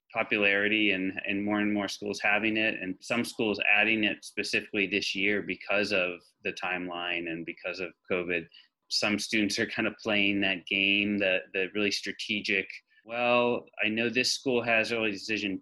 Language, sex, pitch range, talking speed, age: English, male, 100-120 Hz, 175 wpm, 30-49